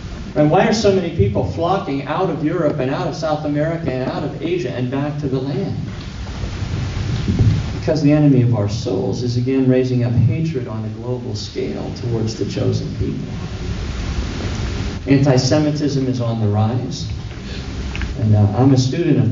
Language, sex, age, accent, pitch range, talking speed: English, male, 40-59, American, 110-145 Hz, 170 wpm